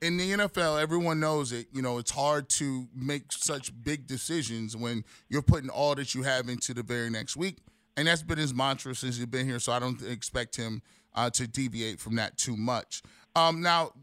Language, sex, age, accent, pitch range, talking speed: English, male, 20-39, American, 120-165 Hz, 215 wpm